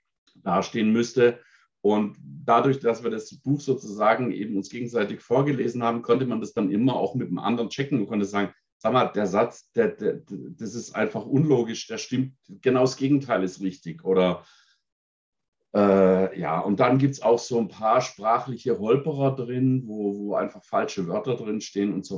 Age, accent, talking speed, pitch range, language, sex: 50-69, German, 175 wpm, 95-125 Hz, English, male